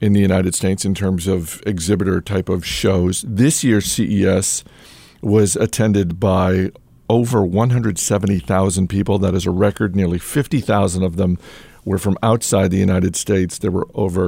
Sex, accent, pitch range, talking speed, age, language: male, American, 95-115 Hz, 155 wpm, 50-69, English